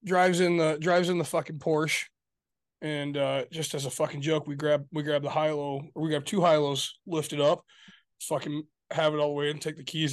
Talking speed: 225 wpm